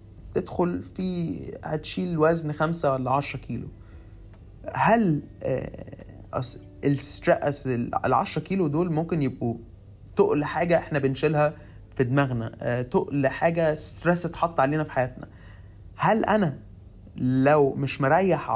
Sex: male